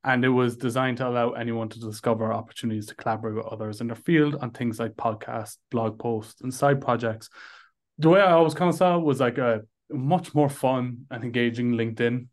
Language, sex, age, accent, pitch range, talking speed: English, male, 20-39, Irish, 115-140 Hz, 210 wpm